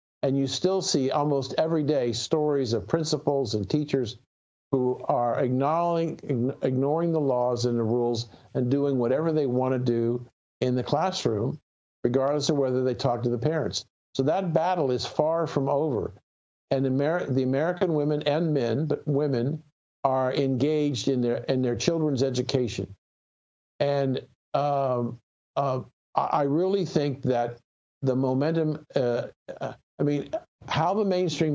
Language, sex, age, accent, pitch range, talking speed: English, male, 50-69, American, 120-145 Hz, 150 wpm